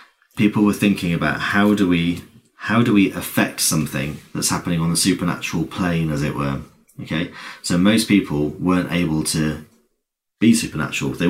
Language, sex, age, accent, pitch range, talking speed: English, male, 30-49, British, 80-95 Hz, 165 wpm